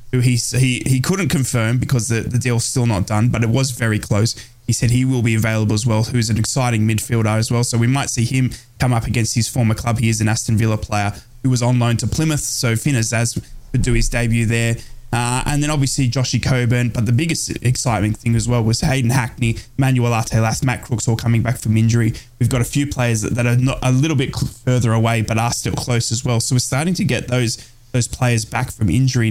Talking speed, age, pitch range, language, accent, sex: 245 wpm, 20-39, 115-125 Hz, English, Australian, male